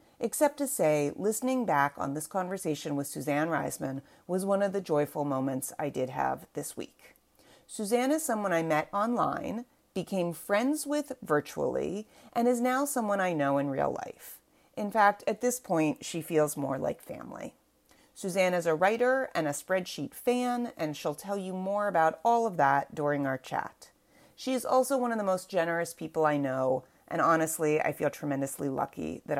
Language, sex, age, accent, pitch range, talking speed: English, female, 30-49, American, 150-235 Hz, 180 wpm